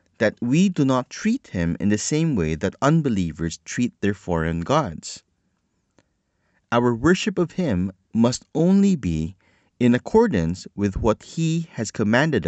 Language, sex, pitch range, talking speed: English, male, 90-135 Hz, 145 wpm